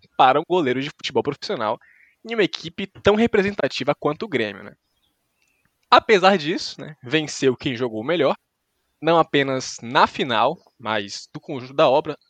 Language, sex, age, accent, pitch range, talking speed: Portuguese, male, 20-39, Brazilian, 125-170 Hz, 150 wpm